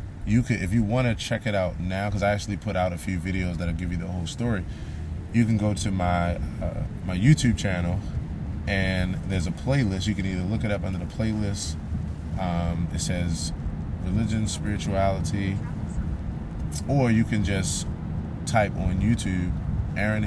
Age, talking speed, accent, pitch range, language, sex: 30-49, 175 wpm, American, 85-110 Hz, English, male